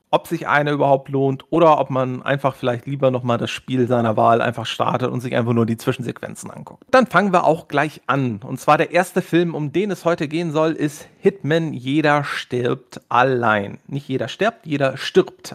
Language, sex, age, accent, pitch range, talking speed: German, male, 40-59, German, 130-175 Hz, 200 wpm